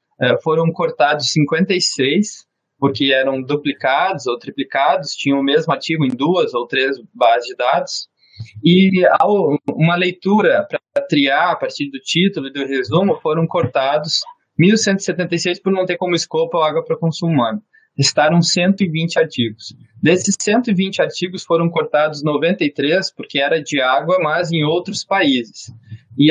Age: 20-39